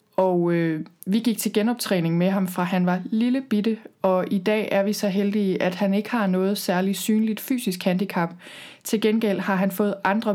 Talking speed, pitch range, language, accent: 205 wpm, 180-210 Hz, Danish, native